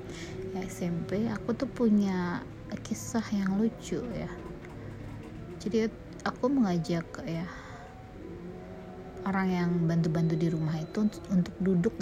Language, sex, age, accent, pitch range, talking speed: Indonesian, female, 20-39, native, 140-195 Hz, 110 wpm